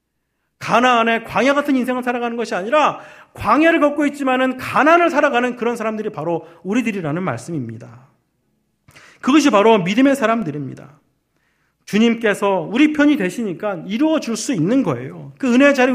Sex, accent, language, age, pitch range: male, native, Korean, 40-59, 190-280 Hz